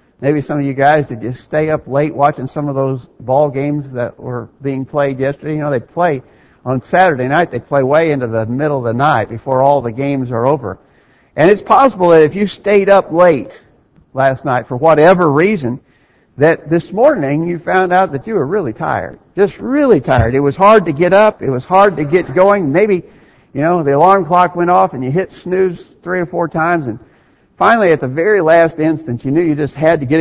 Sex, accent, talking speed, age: male, American, 225 wpm, 50-69